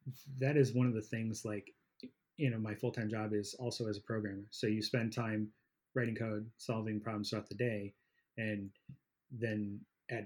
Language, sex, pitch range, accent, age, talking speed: English, male, 105-130 Hz, American, 30-49, 180 wpm